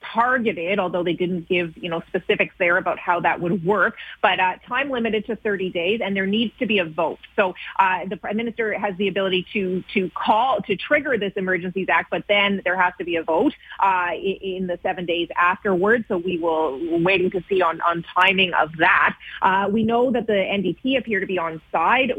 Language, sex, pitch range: English, female, 175-210 Hz